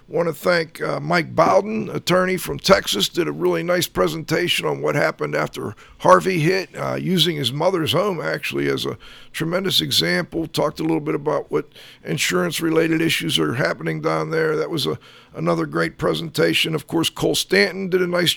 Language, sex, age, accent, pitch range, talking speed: English, male, 50-69, American, 165-195 Hz, 180 wpm